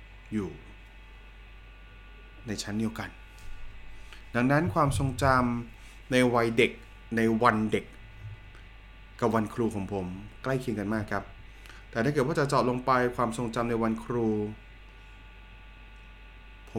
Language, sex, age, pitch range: Thai, male, 20-39, 95-120 Hz